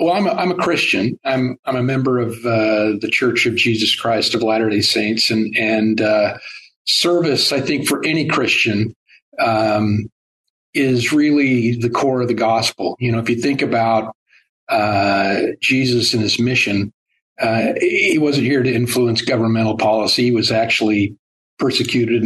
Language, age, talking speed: English, 50-69, 165 wpm